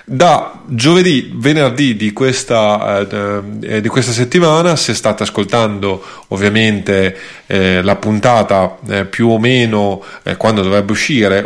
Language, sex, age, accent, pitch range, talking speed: Italian, male, 30-49, native, 105-140 Hz, 125 wpm